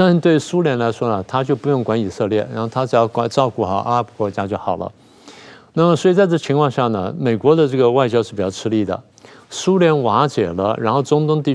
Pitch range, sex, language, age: 115-150 Hz, male, Chinese, 50-69